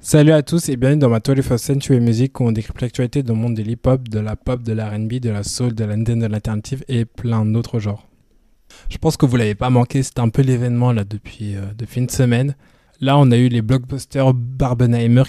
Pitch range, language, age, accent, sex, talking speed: 110-130 Hz, French, 20-39, French, male, 235 wpm